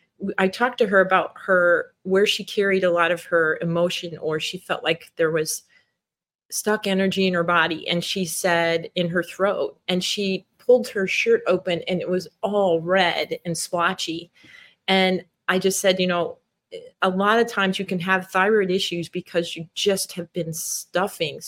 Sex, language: female, English